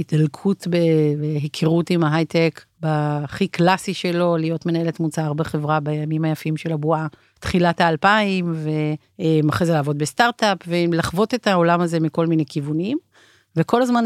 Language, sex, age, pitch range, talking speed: Hebrew, female, 40-59, 155-180 Hz, 130 wpm